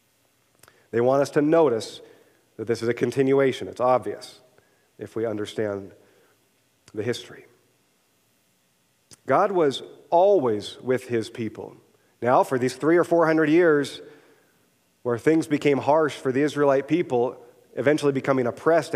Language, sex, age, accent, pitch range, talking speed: English, male, 40-59, American, 120-160 Hz, 135 wpm